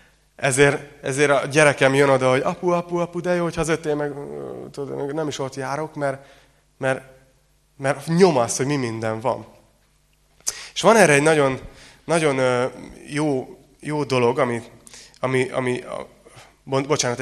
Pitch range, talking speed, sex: 120-145 Hz, 135 wpm, male